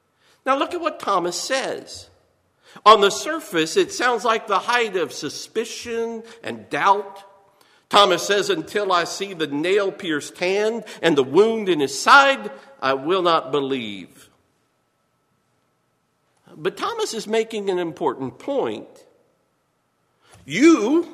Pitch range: 185-310 Hz